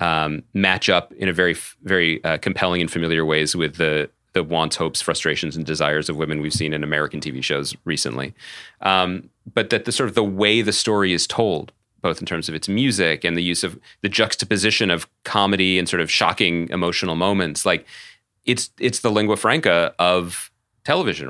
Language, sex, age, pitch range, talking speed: English, male, 30-49, 85-105 Hz, 195 wpm